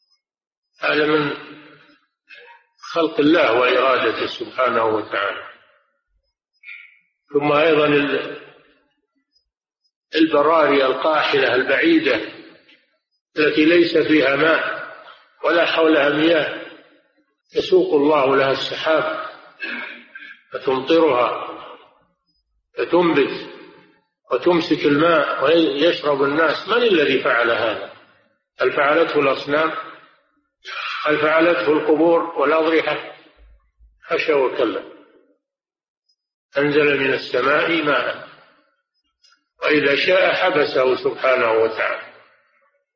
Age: 50-69